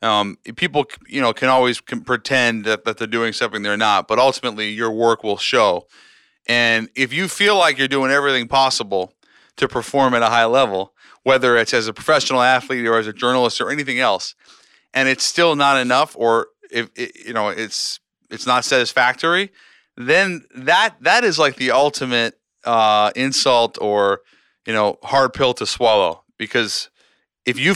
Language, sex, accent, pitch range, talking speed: English, male, American, 115-140 Hz, 175 wpm